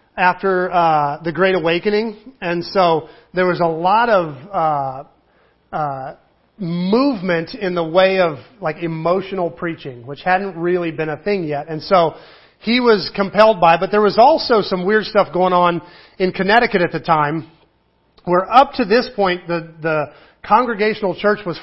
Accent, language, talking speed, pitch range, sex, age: American, English, 165 wpm, 160-195 Hz, male, 40-59